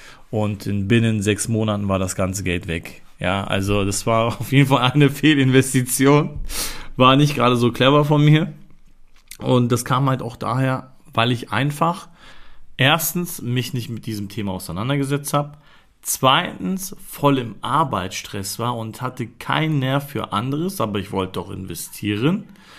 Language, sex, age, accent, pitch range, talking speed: German, male, 40-59, German, 110-145 Hz, 155 wpm